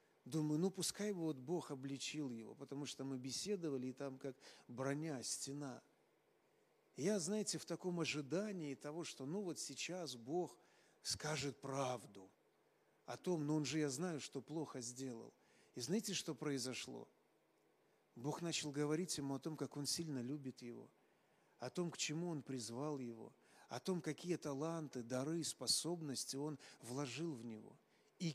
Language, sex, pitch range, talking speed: Russian, male, 135-170 Hz, 155 wpm